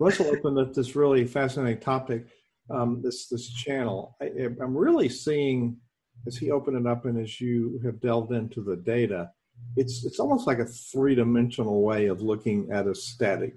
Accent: American